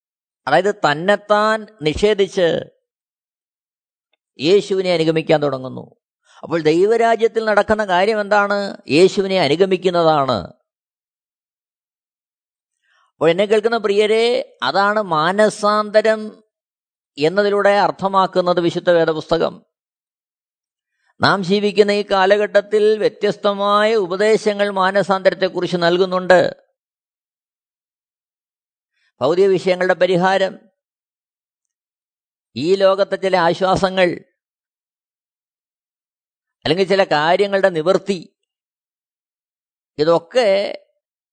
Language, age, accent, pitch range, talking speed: Malayalam, 20-39, native, 180-210 Hz, 60 wpm